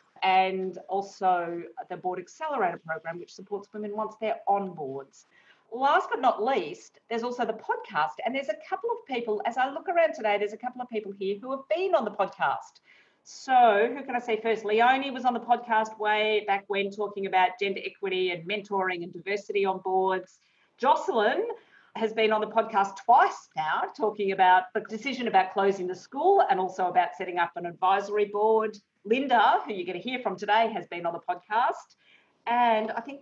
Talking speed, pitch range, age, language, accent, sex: 195 wpm, 190-250 Hz, 50-69, English, Australian, female